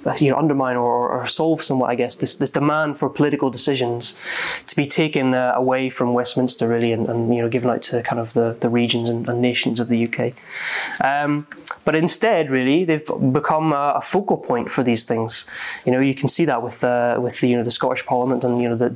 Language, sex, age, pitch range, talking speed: English, male, 20-39, 120-135 Hz, 230 wpm